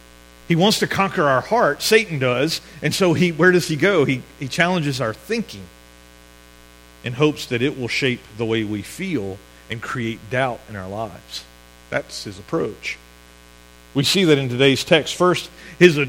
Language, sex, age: English, male, 40-59